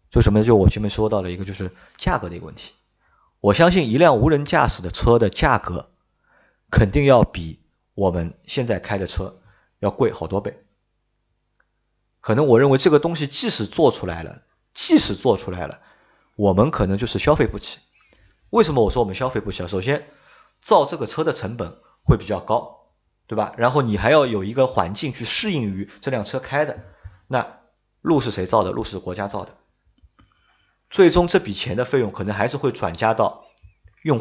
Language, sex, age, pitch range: Chinese, male, 30-49, 100-135 Hz